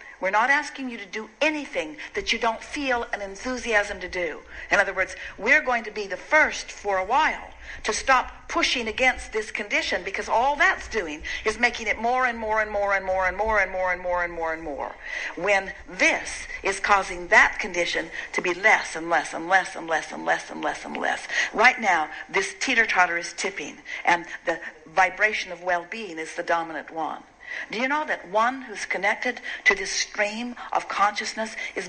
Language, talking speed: English, 200 wpm